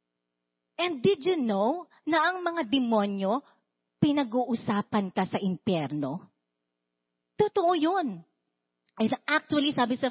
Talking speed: 105 wpm